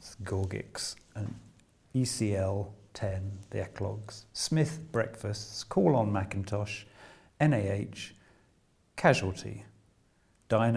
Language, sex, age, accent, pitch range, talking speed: English, male, 50-69, British, 100-120 Hz, 70 wpm